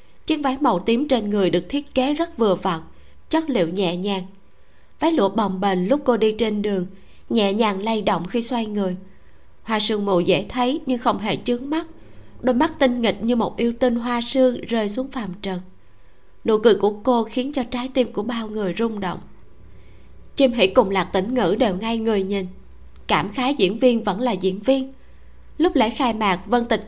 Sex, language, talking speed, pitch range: female, Vietnamese, 210 wpm, 195-255 Hz